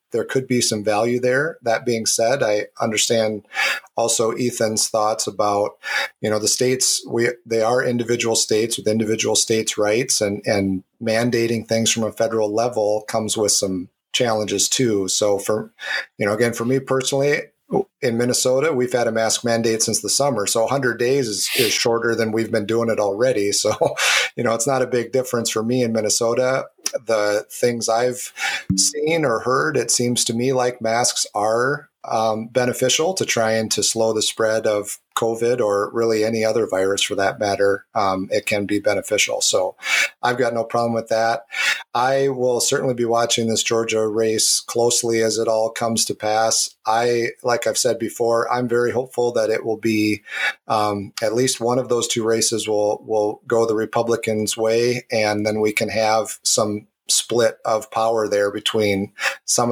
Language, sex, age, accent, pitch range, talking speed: English, male, 30-49, American, 105-120 Hz, 180 wpm